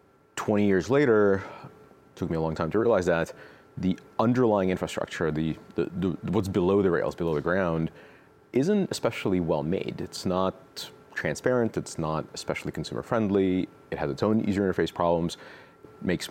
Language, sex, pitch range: English, male, 80-95 Hz